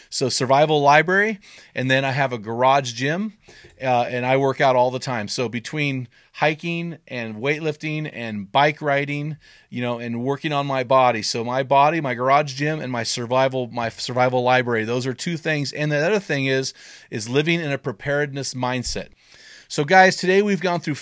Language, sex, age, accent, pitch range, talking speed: English, male, 30-49, American, 130-160 Hz, 190 wpm